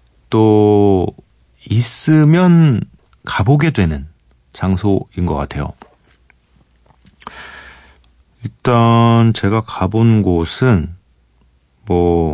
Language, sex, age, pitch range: Korean, male, 40-59, 80-115 Hz